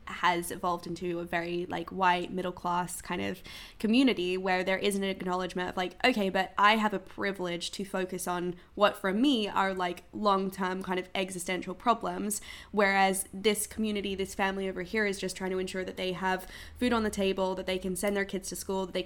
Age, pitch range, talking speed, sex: 10-29, 185-205 Hz, 210 wpm, female